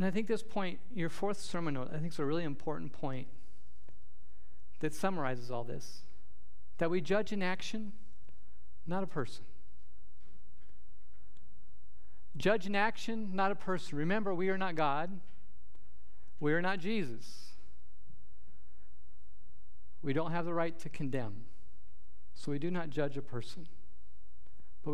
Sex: male